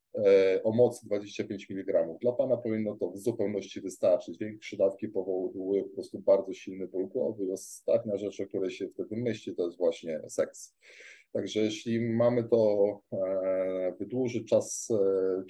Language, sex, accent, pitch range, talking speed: Polish, male, native, 95-120 Hz, 150 wpm